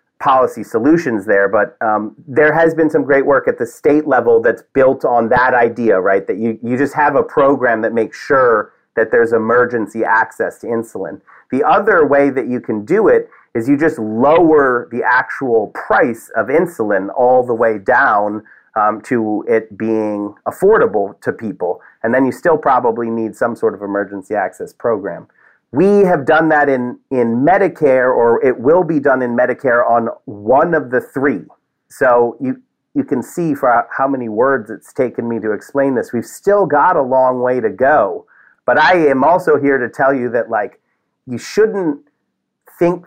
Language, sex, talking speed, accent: English, male, 185 wpm, American